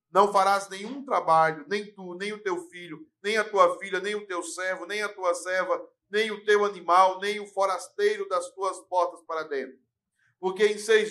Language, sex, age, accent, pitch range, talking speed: Portuguese, male, 50-69, Brazilian, 170-205 Hz, 200 wpm